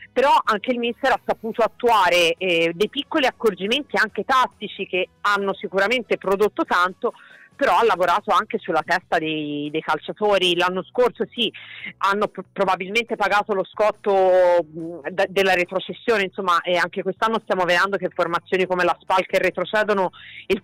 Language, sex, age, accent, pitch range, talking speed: Italian, female, 40-59, native, 180-210 Hz, 150 wpm